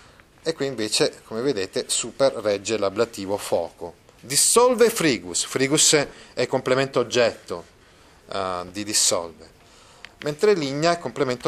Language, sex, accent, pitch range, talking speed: Italian, male, native, 110-155 Hz, 115 wpm